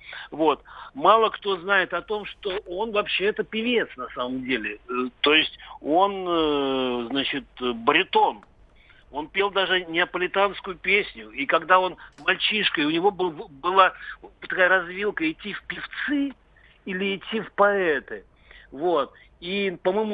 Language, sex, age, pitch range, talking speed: Russian, male, 50-69, 155-205 Hz, 120 wpm